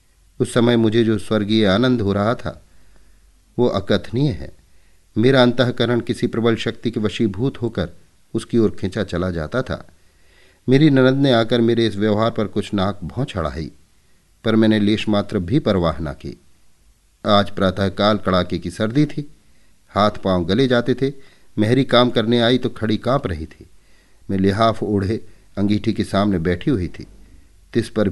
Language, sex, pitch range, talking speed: Hindi, male, 95-125 Hz, 165 wpm